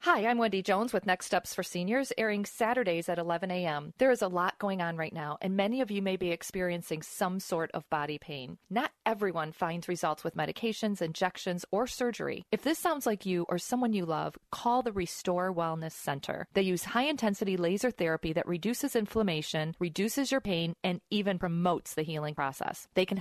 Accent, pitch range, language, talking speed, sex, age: American, 165-210 Hz, English, 195 wpm, female, 40-59